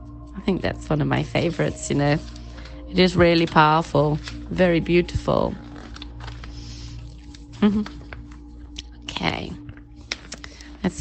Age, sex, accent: 40-59, female, British